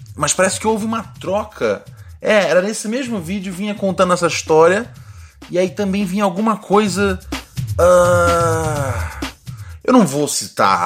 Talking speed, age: 145 wpm, 20-39